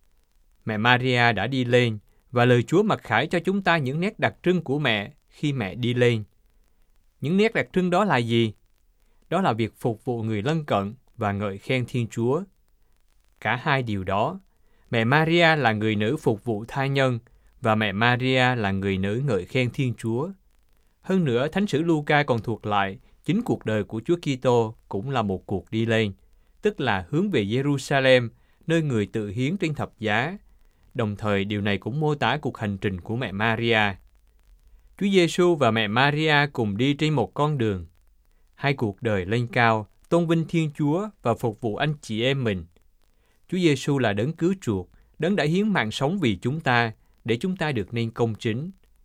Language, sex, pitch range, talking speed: Vietnamese, male, 105-140 Hz, 195 wpm